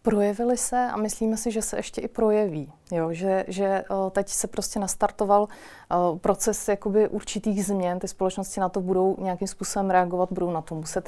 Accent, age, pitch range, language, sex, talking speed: native, 30-49, 185-205 Hz, Czech, female, 180 wpm